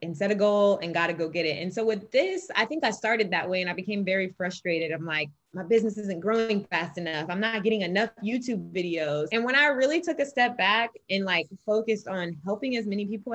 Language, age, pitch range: English, 20-39, 170-210 Hz